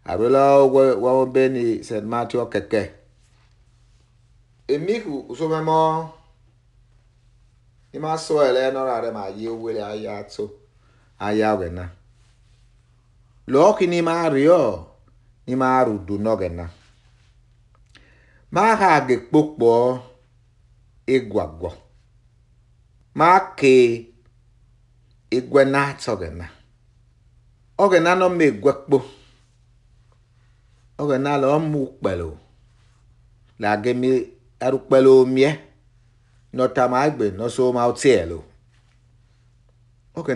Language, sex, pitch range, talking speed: English, male, 115-130 Hz, 75 wpm